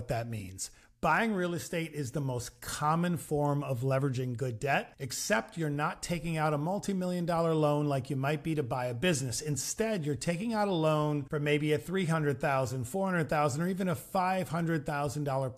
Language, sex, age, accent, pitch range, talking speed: English, male, 40-59, American, 135-170 Hz, 175 wpm